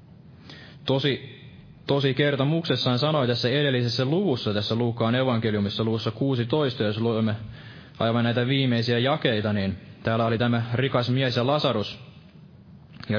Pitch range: 110-140 Hz